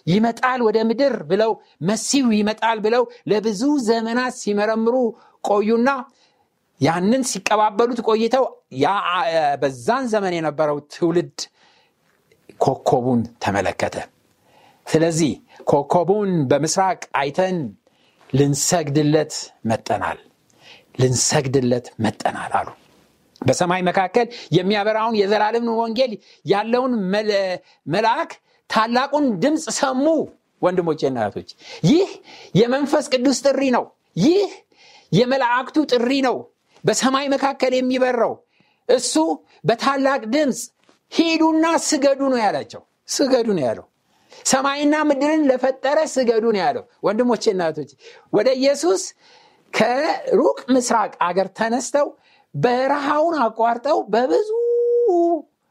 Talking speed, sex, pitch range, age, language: 70 wpm, male, 195-275 Hz, 60-79, Amharic